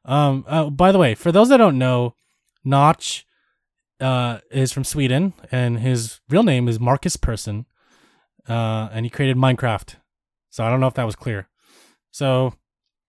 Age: 20-39